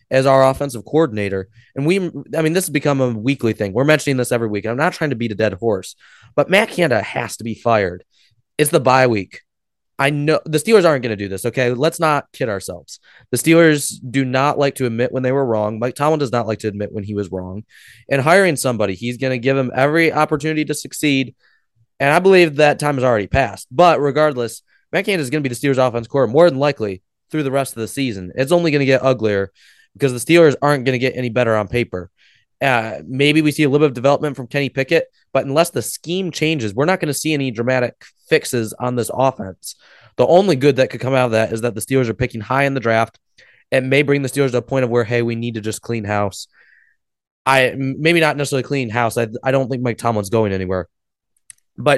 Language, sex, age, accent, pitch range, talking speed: English, male, 20-39, American, 115-145 Hz, 245 wpm